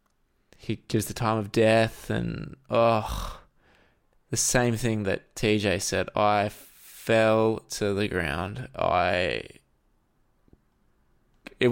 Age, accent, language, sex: 20-39, Australian, English, male